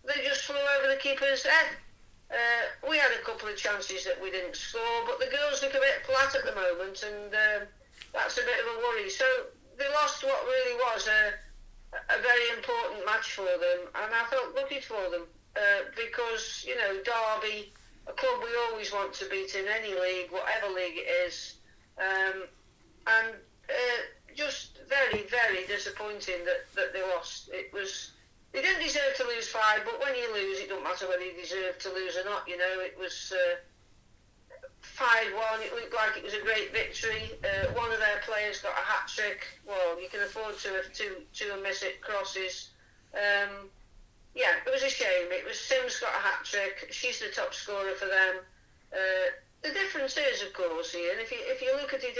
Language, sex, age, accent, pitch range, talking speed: English, female, 50-69, British, 195-295 Hz, 200 wpm